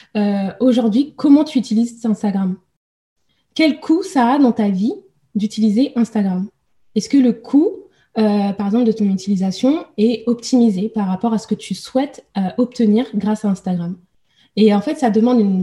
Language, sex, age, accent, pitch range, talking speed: French, female, 20-39, French, 190-235 Hz, 175 wpm